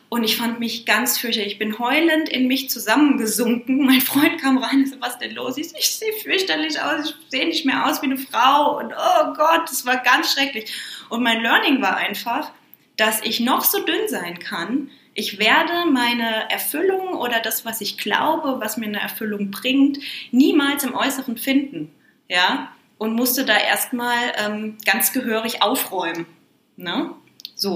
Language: German